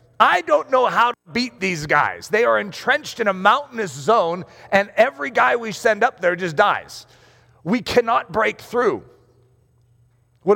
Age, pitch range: 40-59, 125-210 Hz